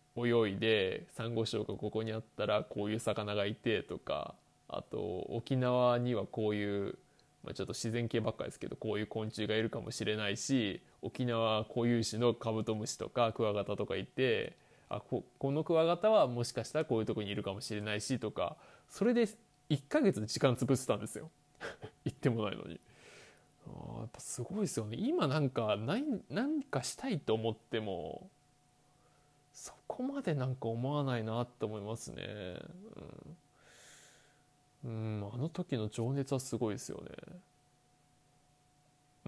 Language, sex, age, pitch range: Japanese, male, 20-39, 110-145 Hz